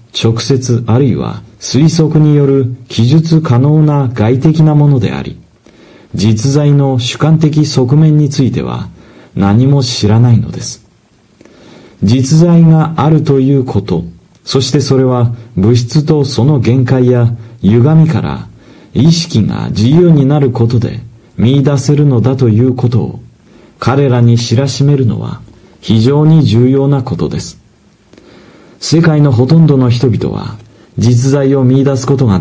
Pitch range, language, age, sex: 120-150 Hz, Japanese, 40-59, male